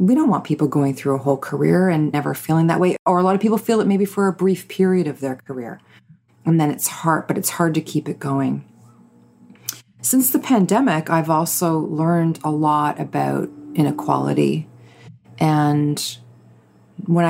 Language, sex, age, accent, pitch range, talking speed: English, female, 30-49, American, 135-160 Hz, 180 wpm